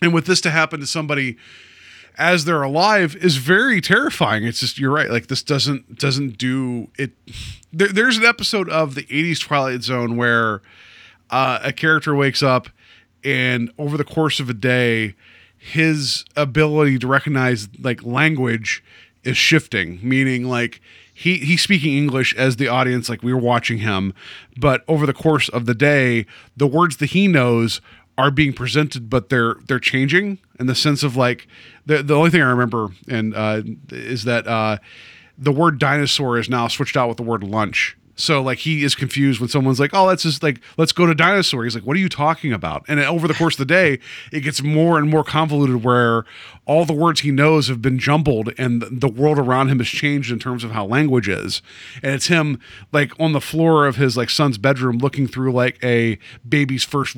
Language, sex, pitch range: English, male, 120-155 Hz